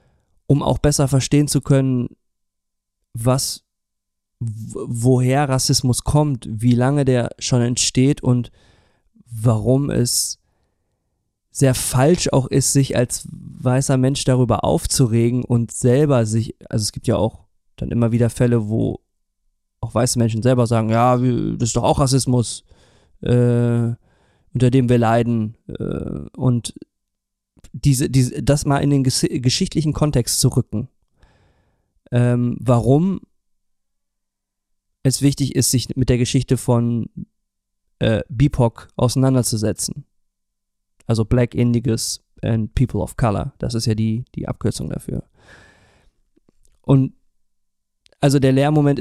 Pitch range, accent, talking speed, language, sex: 110-135 Hz, German, 125 wpm, German, male